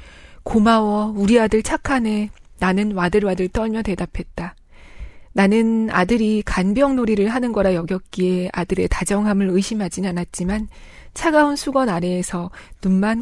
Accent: native